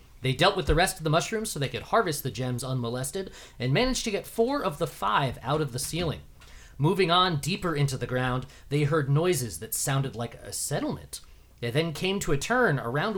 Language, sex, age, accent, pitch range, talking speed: English, male, 30-49, American, 130-180 Hz, 220 wpm